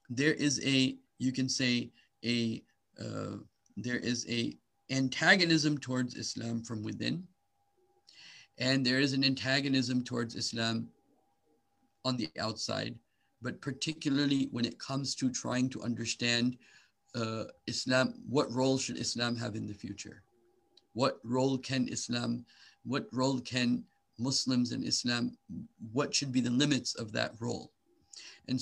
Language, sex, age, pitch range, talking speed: English, male, 50-69, 120-140 Hz, 135 wpm